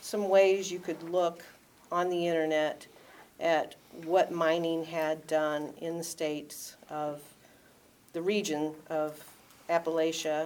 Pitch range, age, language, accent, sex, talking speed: 160-185 Hz, 50-69, English, American, female, 120 wpm